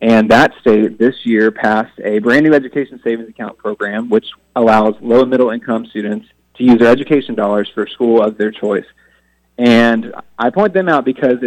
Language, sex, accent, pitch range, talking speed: English, male, American, 110-125 Hz, 180 wpm